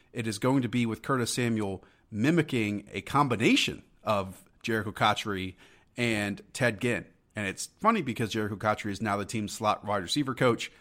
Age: 30-49